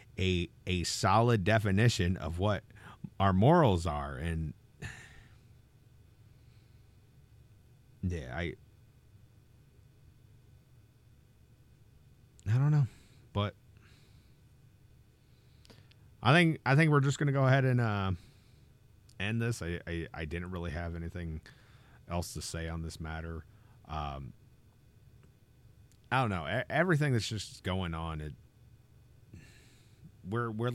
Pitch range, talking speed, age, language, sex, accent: 85-120 Hz, 105 wpm, 40-59, English, male, American